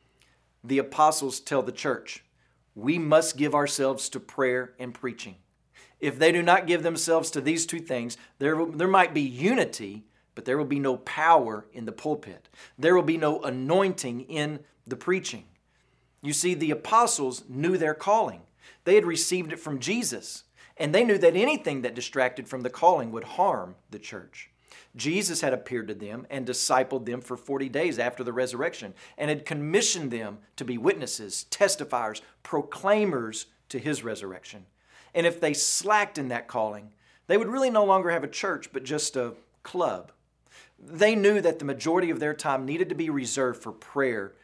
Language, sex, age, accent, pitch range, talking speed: English, male, 40-59, American, 125-170 Hz, 175 wpm